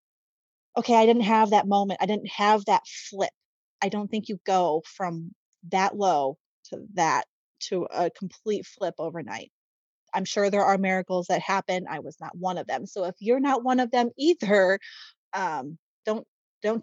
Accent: American